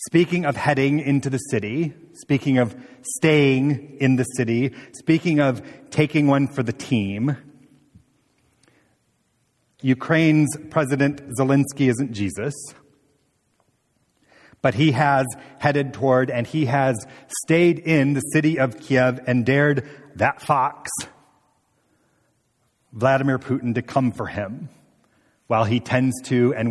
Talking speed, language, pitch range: 120 wpm, English, 120-150 Hz